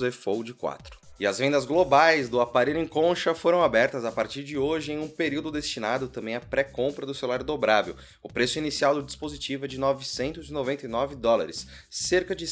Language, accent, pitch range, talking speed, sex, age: Portuguese, Brazilian, 125-155 Hz, 180 wpm, male, 20-39